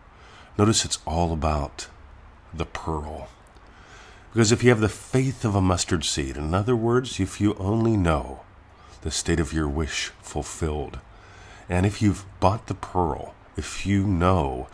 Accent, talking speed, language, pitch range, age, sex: American, 155 wpm, English, 80-105 Hz, 50-69, male